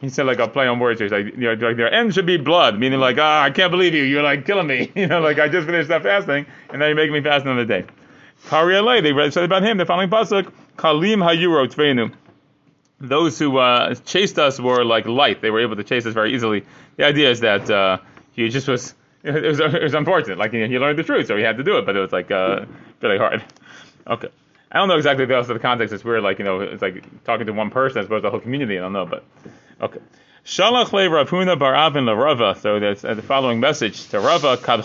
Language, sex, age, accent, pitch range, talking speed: English, male, 30-49, American, 120-165 Hz, 250 wpm